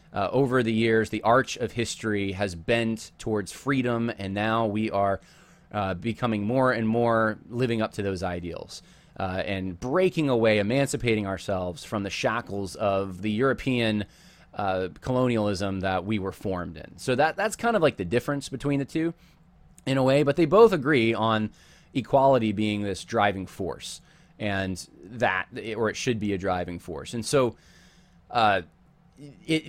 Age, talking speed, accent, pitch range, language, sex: 20-39, 170 wpm, American, 100-135 Hz, English, male